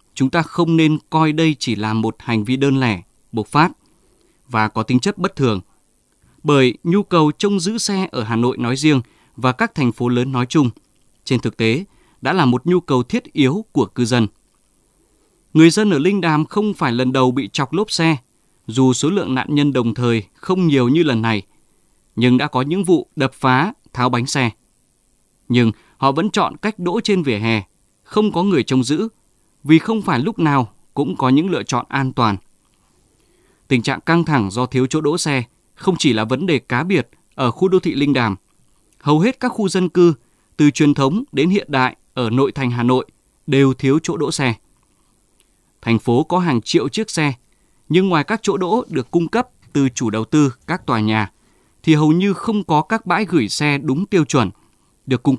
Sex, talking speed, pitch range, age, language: male, 210 wpm, 120-170 Hz, 20-39, Vietnamese